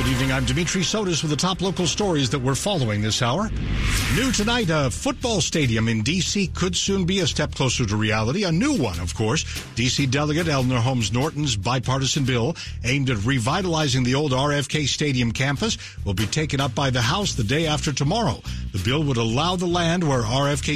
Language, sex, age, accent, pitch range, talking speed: English, male, 60-79, American, 115-155 Hz, 200 wpm